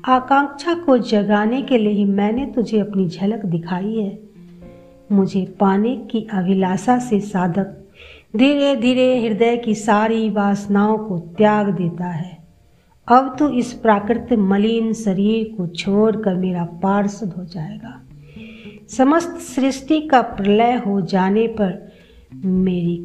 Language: Hindi